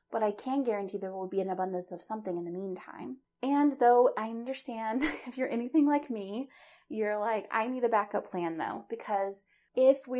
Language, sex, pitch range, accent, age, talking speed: English, female, 195-260 Hz, American, 30-49, 200 wpm